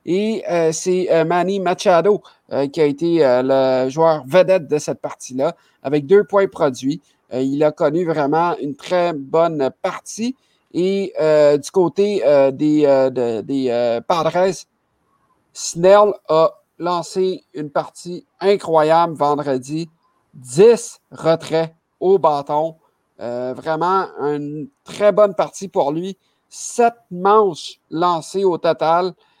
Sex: male